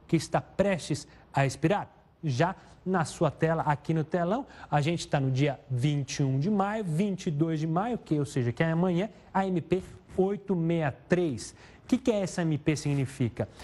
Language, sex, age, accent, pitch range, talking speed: Portuguese, male, 30-49, Brazilian, 135-170 Hz, 165 wpm